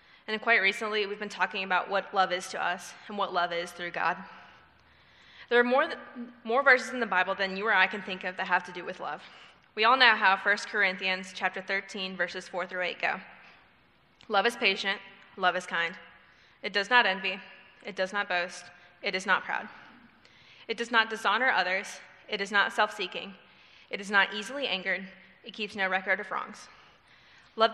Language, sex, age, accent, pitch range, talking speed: English, female, 20-39, American, 185-215 Hz, 200 wpm